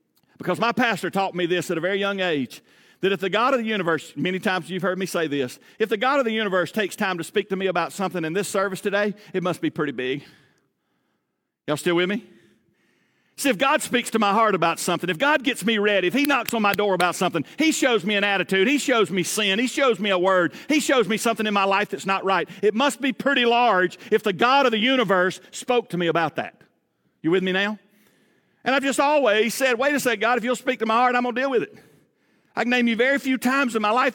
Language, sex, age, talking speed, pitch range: English, male, 50-69, 260 wpm, 185-245 Hz